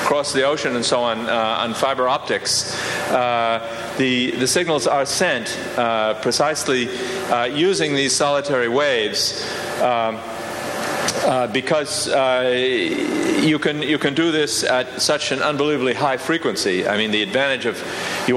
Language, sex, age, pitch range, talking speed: English, male, 50-69, 115-145 Hz, 145 wpm